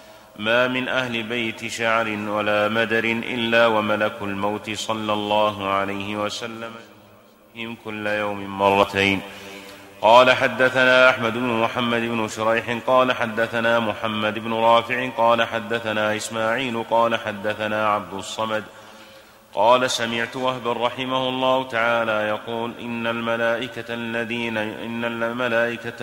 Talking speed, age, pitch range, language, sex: 105 wpm, 30-49, 110-130 Hz, Arabic, male